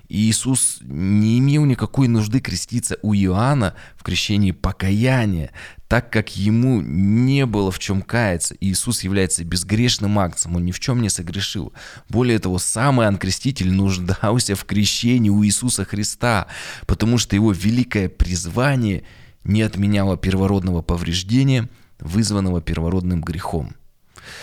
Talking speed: 125 wpm